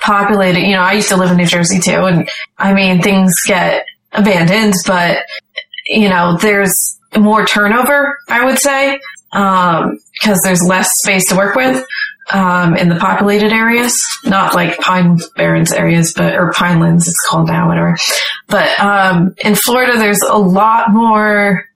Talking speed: 165 wpm